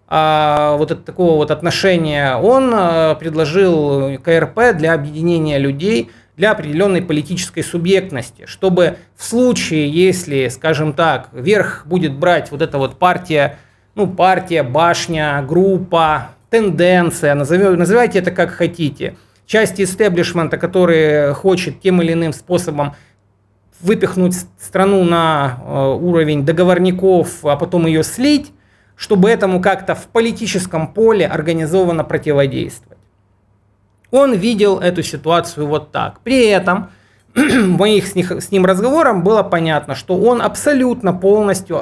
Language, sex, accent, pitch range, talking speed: Russian, male, native, 150-185 Hz, 120 wpm